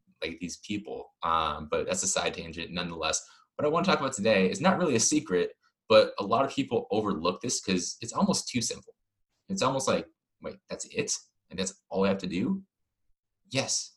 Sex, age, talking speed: male, 20-39, 200 wpm